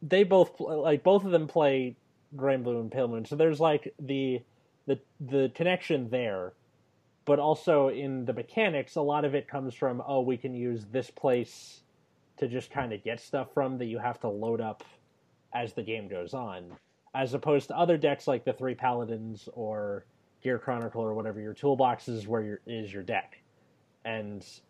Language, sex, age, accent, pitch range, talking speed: English, male, 30-49, American, 115-150 Hz, 190 wpm